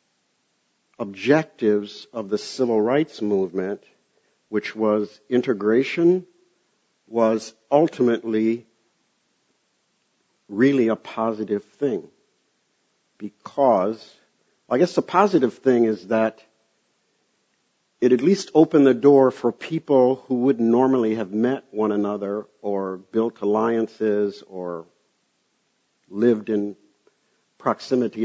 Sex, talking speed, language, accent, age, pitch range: male, 95 wpm, English, American, 60-79, 105-125 Hz